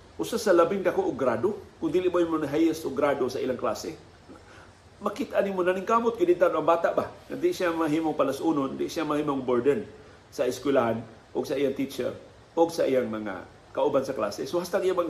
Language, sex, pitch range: Filipino, male, 120-165 Hz